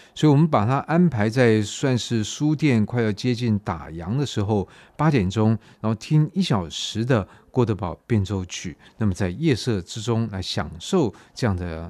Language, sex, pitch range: Chinese, male, 95-125 Hz